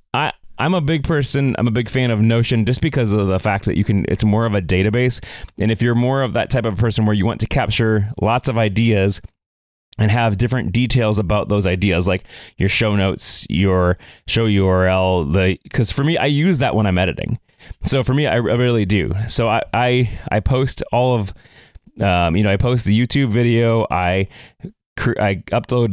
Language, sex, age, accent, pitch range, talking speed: English, male, 30-49, American, 100-120 Hz, 205 wpm